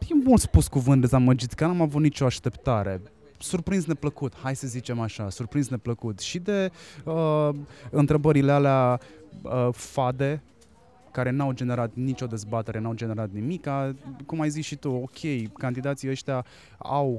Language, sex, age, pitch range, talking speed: Romanian, male, 20-39, 120-145 Hz, 155 wpm